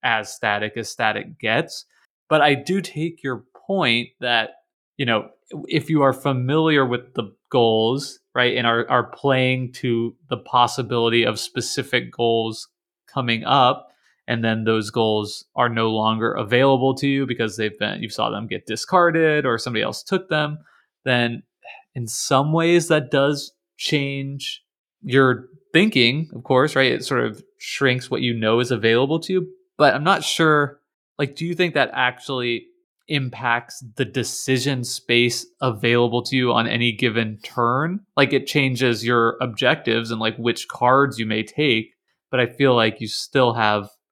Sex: male